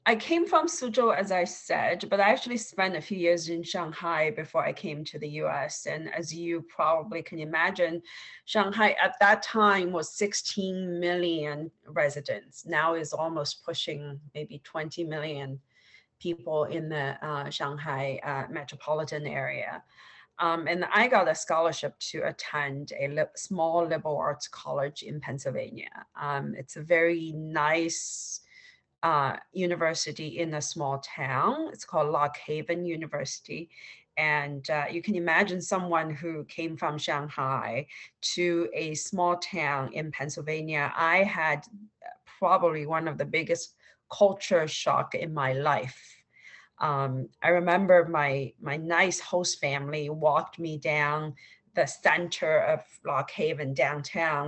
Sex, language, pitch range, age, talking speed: female, English, 150-175 Hz, 40-59, 140 wpm